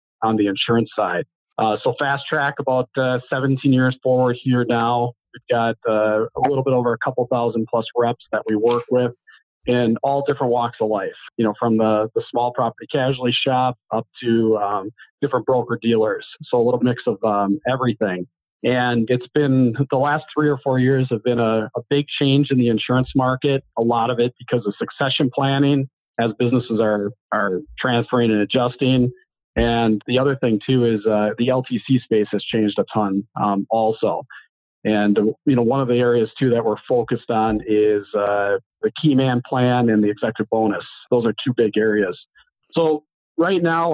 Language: English